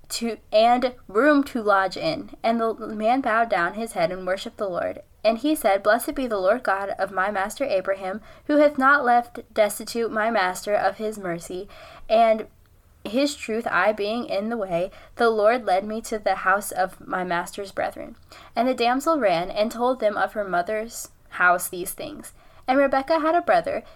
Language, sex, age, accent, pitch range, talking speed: English, female, 10-29, American, 200-270 Hz, 190 wpm